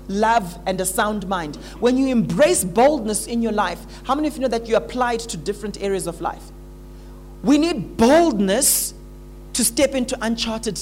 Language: English